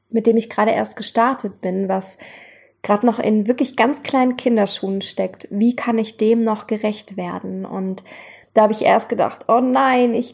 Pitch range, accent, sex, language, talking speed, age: 205-240 Hz, German, female, German, 185 wpm, 20-39